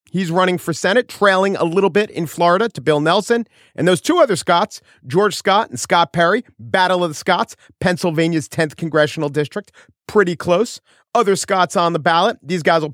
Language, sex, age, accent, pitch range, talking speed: English, male, 40-59, American, 145-205 Hz, 190 wpm